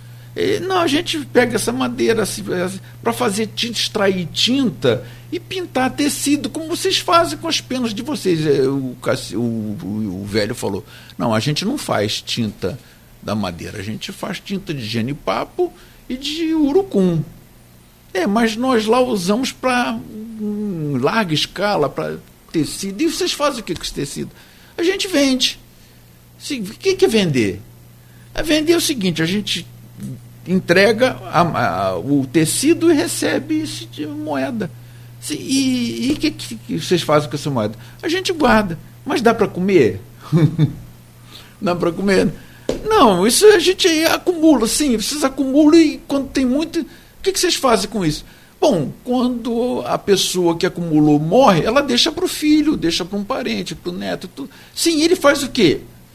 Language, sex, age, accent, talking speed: Portuguese, male, 60-79, Brazilian, 165 wpm